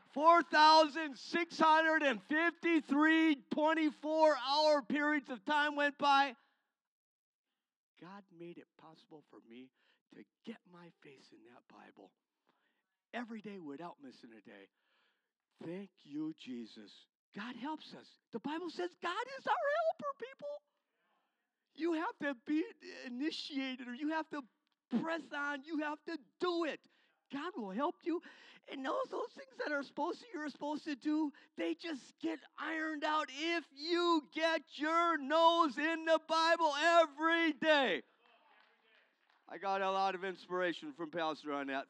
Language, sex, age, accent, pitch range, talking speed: English, male, 50-69, American, 190-315 Hz, 140 wpm